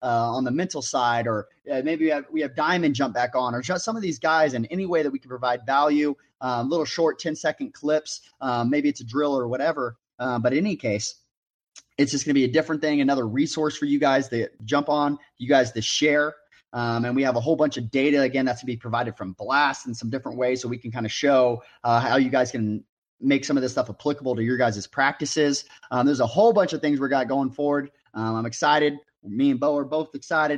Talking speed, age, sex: 255 wpm, 30-49, male